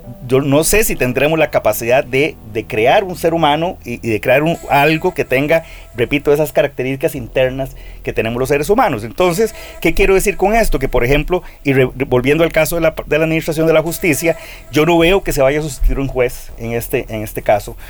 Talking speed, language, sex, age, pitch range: 225 wpm, Spanish, male, 40-59, 125-165 Hz